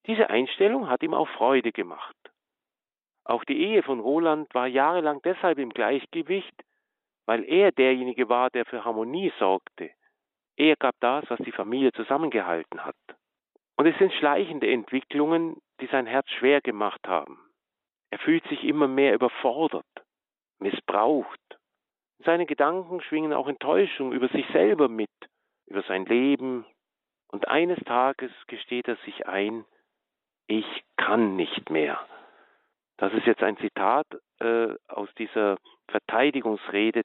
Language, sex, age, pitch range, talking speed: German, male, 50-69, 110-150 Hz, 135 wpm